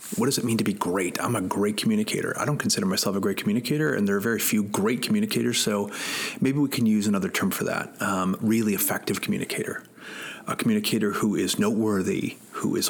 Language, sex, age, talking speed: English, male, 30-49, 210 wpm